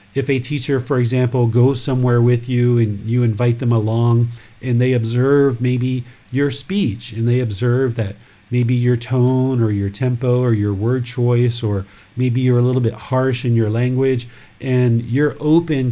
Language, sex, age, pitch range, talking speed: English, male, 40-59, 115-145 Hz, 175 wpm